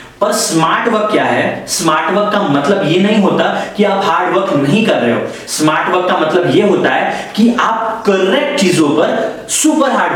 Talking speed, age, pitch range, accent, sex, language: 200 wpm, 30-49, 170-245 Hz, native, male, Hindi